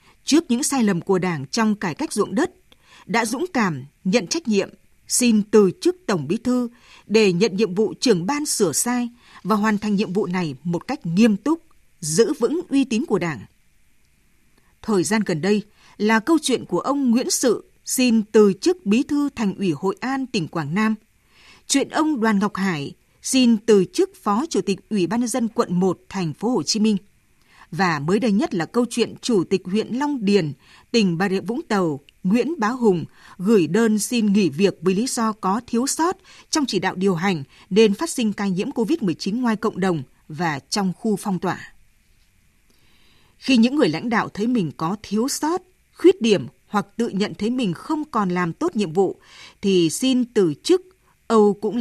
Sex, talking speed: female, 200 wpm